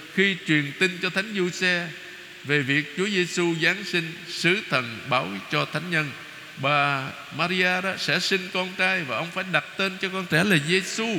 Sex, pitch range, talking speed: male, 145-185 Hz, 195 wpm